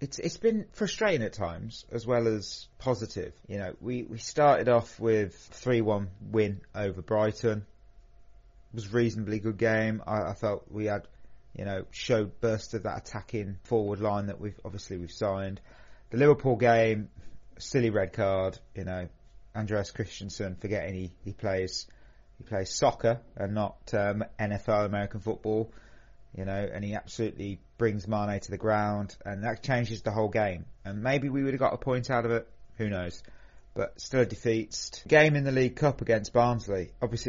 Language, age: English, 30-49